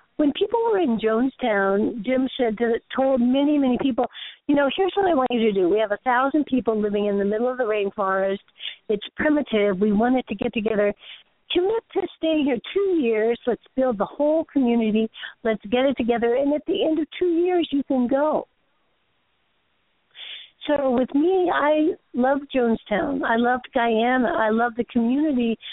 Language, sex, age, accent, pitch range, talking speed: English, female, 60-79, American, 230-285 Hz, 180 wpm